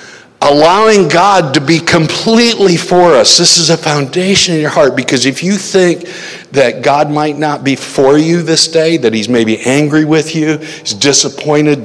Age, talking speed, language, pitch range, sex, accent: 60-79, 175 wpm, English, 140-185 Hz, male, American